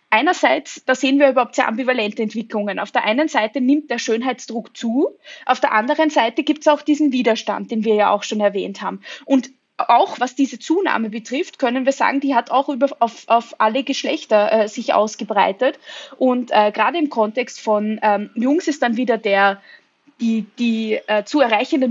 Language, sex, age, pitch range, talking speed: German, female, 20-39, 225-285 Hz, 185 wpm